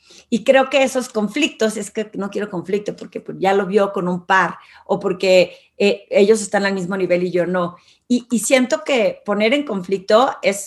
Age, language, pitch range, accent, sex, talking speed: 40-59, Spanish, 180-225 Hz, Mexican, female, 200 wpm